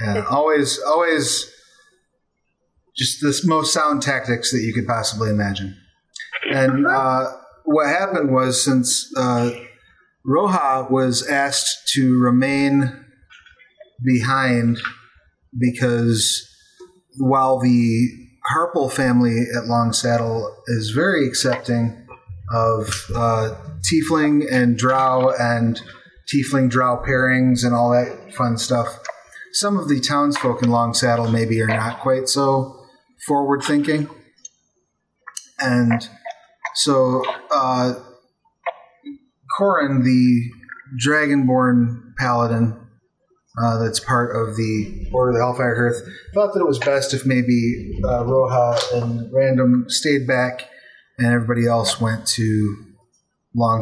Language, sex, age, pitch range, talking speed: English, male, 30-49, 115-140 Hz, 110 wpm